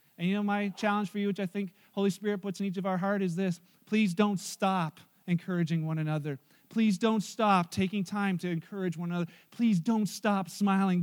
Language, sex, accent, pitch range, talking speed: English, male, American, 175-210 Hz, 210 wpm